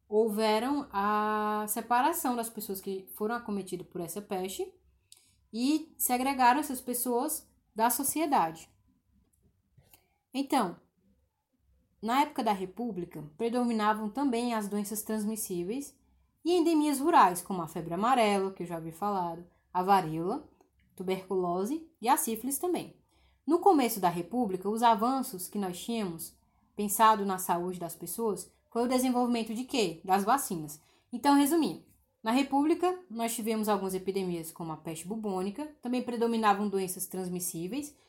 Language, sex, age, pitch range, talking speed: Portuguese, female, 10-29, 190-260 Hz, 130 wpm